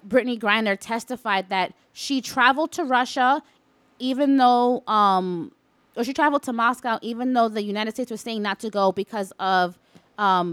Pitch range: 195-240 Hz